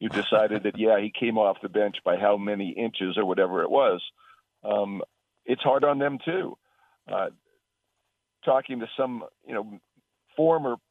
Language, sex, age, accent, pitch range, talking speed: English, male, 50-69, American, 105-125 Hz, 165 wpm